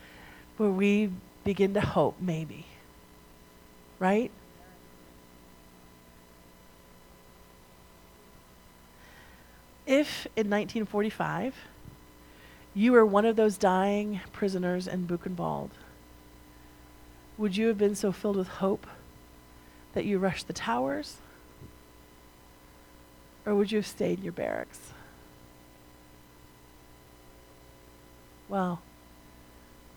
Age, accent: 40-59, American